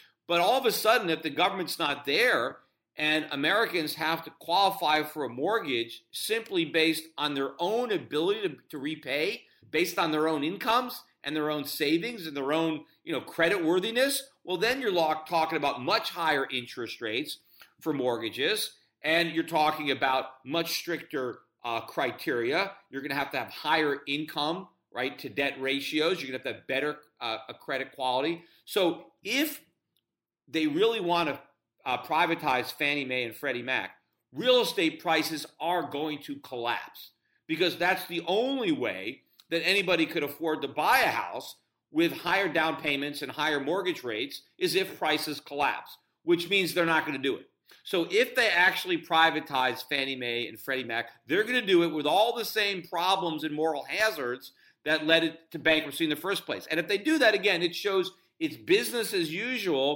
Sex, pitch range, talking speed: male, 145-195 Hz, 180 wpm